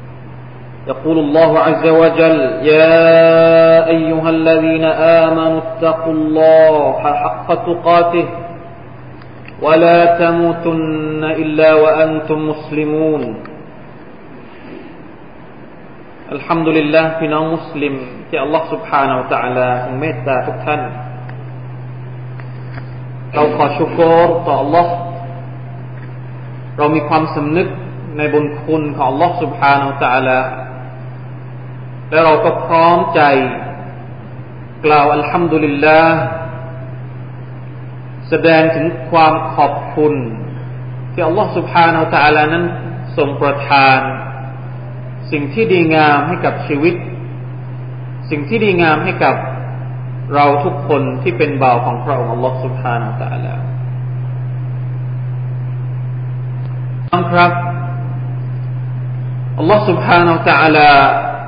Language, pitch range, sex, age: Thai, 125-160 Hz, male, 40-59